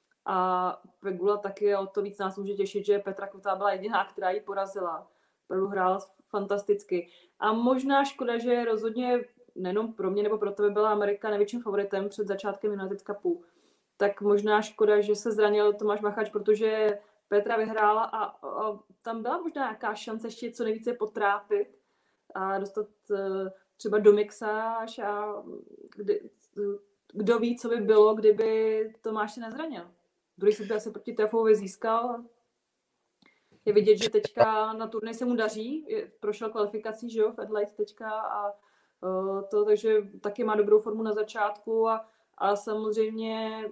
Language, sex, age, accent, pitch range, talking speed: Czech, female, 20-39, native, 205-225 Hz, 150 wpm